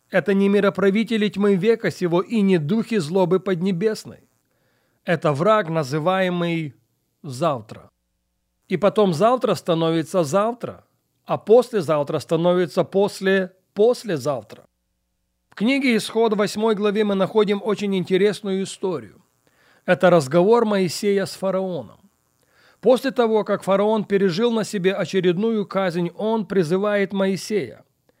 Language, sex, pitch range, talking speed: Russian, male, 165-205 Hz, 110 wpm